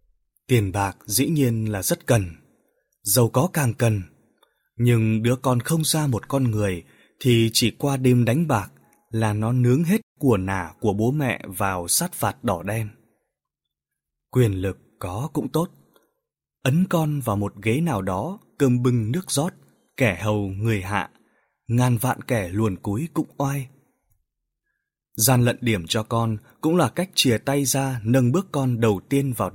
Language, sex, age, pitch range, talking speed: Vietnamese, male, 20-39, 105-140 Hz, 170 wpm